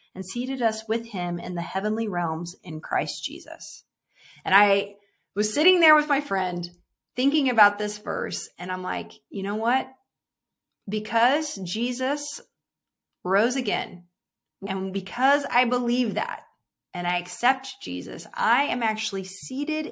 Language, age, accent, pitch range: English, 20-39, American, 195-260 Hz